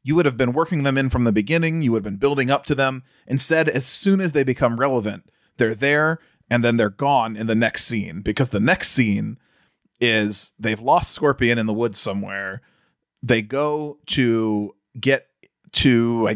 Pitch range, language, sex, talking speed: 110-150 Hz, English, male, 195 wpm